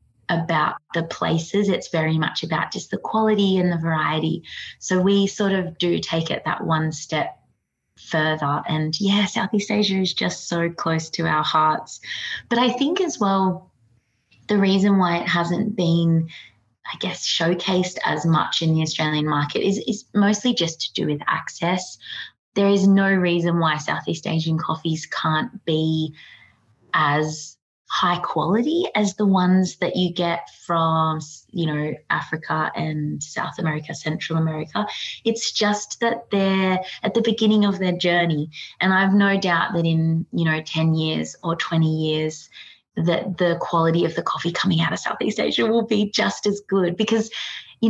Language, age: English, 20-39